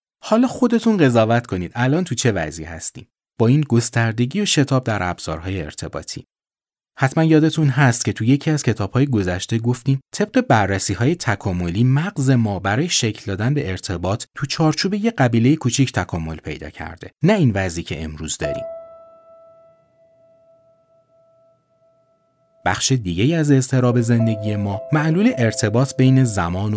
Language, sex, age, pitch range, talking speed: Persian, male, 30-49, 105-175 Hz, 140 wpm